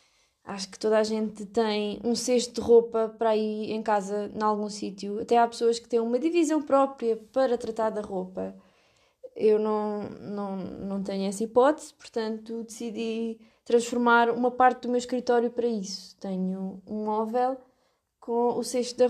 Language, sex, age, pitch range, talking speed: Portuguese, female, 20-39, 215-255 Hz, 165 wpm